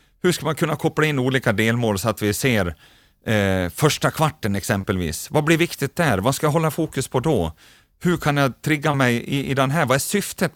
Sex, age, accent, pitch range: male, 30-49, native, 110-150 Hz